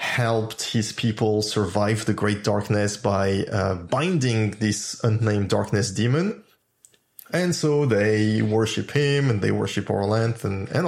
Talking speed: 130 wpm